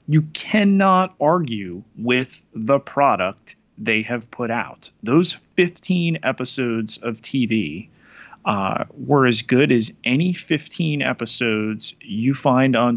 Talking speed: 120 wpm